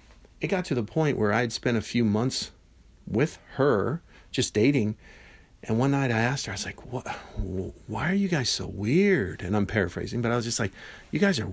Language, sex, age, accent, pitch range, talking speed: English, male, 50-69, American, 110-175 Hz, 225 wpm